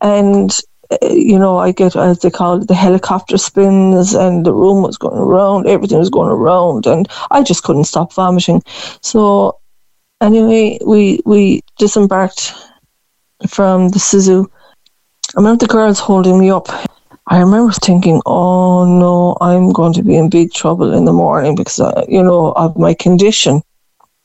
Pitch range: 180-200 Hz